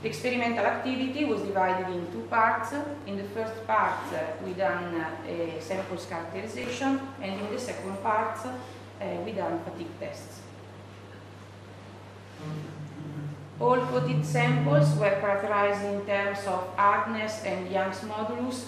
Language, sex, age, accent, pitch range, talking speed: English, female, 30-49, Italian, 155-225 Hz, 130 wpm